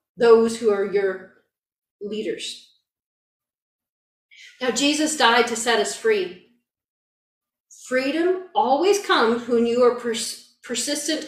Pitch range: 230-300 Hz